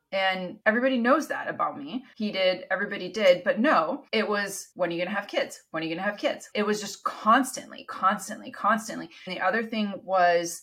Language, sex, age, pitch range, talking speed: English, female, 30-49, 170-220 Hz, 220 wpm